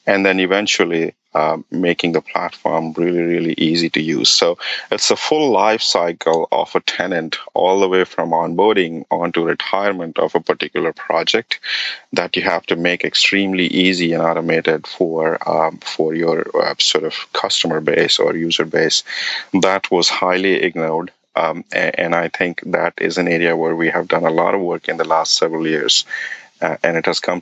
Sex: male